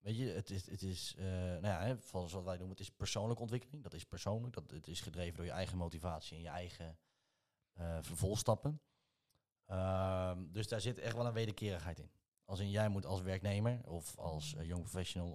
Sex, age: male, 30-49